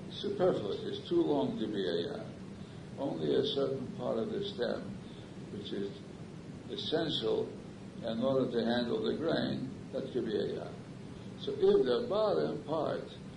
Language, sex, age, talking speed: English, male, 60-79, 145 wpm